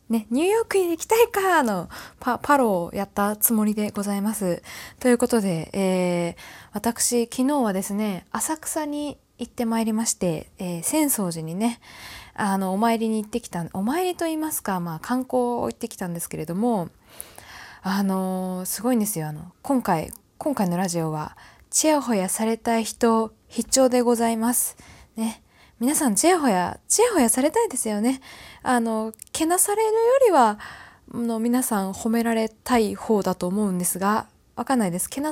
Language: Japanese